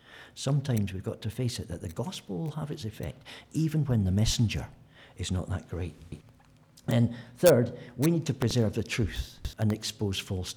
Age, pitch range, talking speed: 60-79, 105-150 Hz, 180 wpm